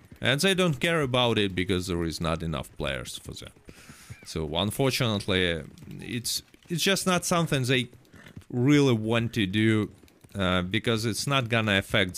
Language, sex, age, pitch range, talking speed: English, male, 30-49, 90-125 Hz, 160 wpm